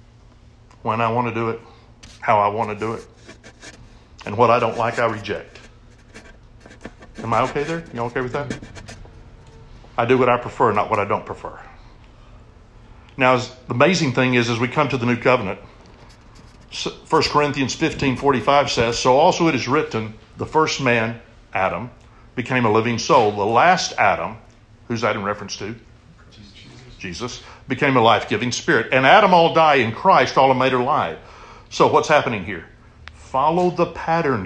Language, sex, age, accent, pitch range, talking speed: English, male, 60-79, American, 110-130 Hz, 170 wpm